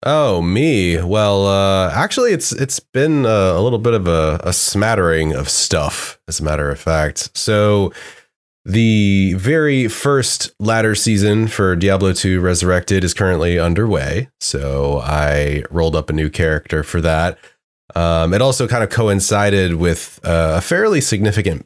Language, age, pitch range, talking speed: English, 30-49, 80-105 Hz, 150 wpm